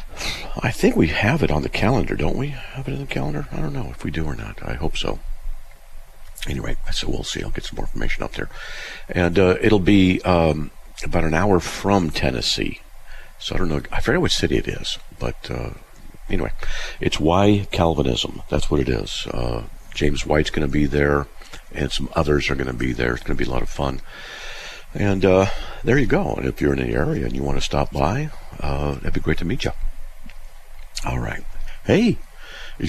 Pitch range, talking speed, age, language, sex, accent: 70-90 Hz, 215 wpm, 50-69, English, male, American